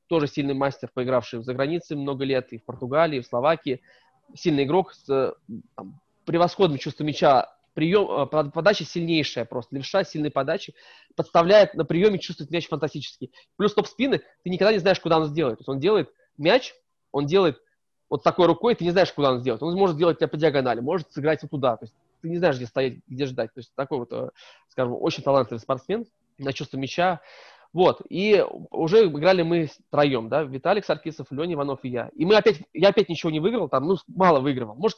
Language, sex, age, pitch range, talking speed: Russian, male, 20-39, 140-180 Hz, 190 wpm